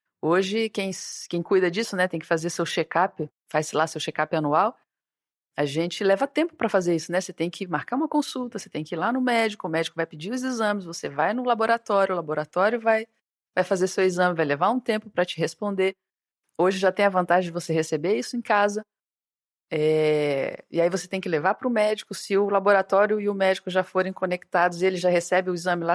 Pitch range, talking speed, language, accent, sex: 165-225 Hz, 225 wpm, Portuguese, Brazilian, female